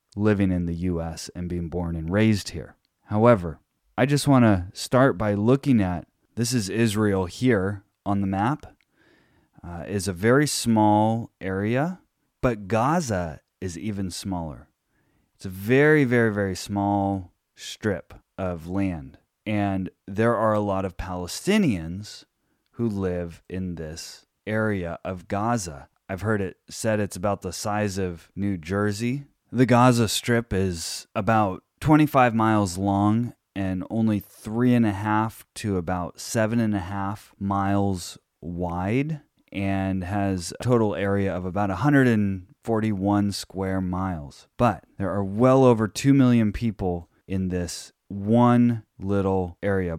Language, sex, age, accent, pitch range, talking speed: English, male, 30-49, American, 90-115 Hz, 140 wpm